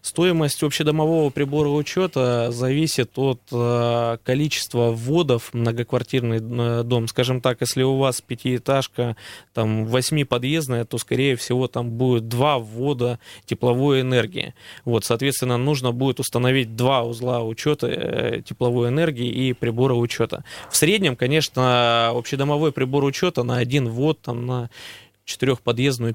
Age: 20-39